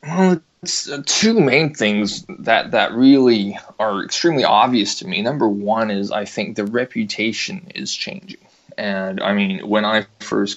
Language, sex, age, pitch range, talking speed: English, male, 20-39, 100-125 Hz, 160 wpm